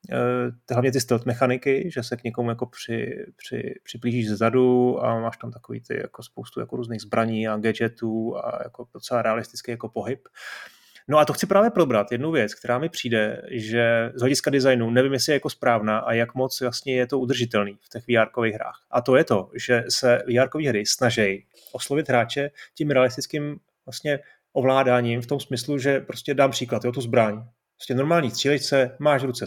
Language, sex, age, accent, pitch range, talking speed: Czech, male, 30-49, native, 115-135 Hz, 185 wpm